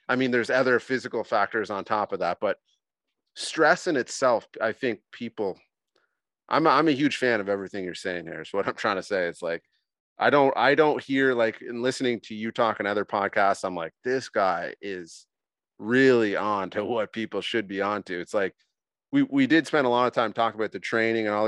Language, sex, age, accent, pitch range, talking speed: English, male, 30-49, American, 105-130 Hz, 220 wpm